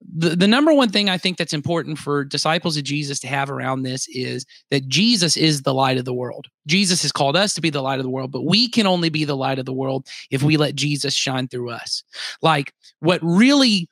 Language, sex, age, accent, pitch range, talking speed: English, male, 30-49, American, 145-190 Hz, 245 wpm